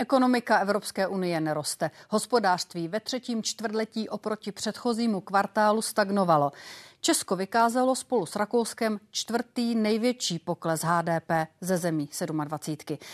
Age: 30-49